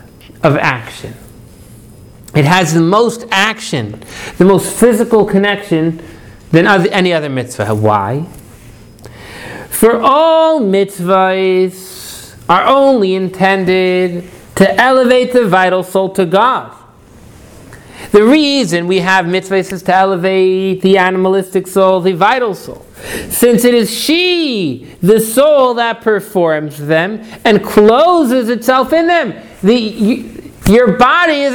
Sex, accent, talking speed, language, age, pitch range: male, American, 120 wpm, English, 50-69, 175-235 Hz